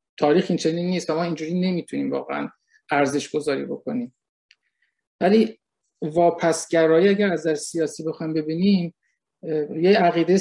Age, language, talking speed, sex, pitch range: 50-69, Persian, 115 wpm, male, 155-185 Hz